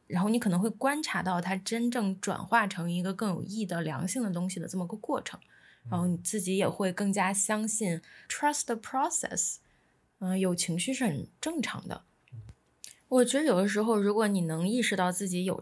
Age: 20-39